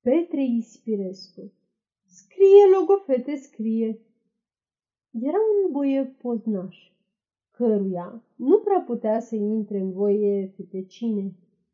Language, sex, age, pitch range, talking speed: Romanian, female, 30-49, 200-265 Hz, 90 wpm